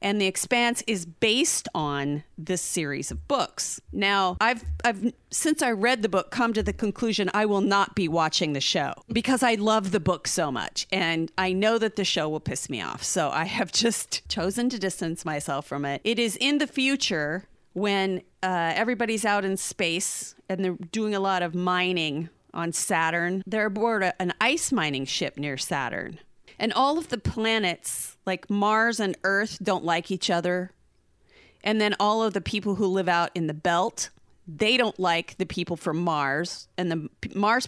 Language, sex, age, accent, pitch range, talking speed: English, female, 40-59, American, 170-220 Hz, 190 wpm